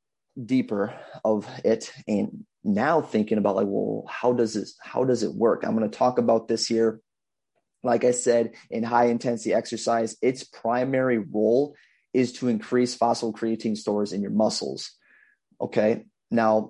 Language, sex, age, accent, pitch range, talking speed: English, male, 30-49, American, 110-125 Hz, 160 wpm